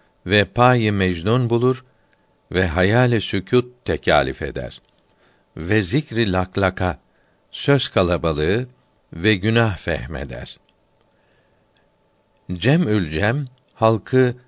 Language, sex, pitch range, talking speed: Turkish, male, 90-120 Hz, 80 wpm